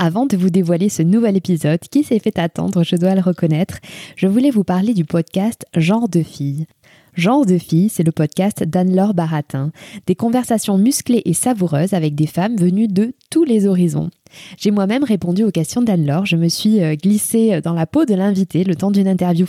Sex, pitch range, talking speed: female, 165-210 Hz, 195 wpm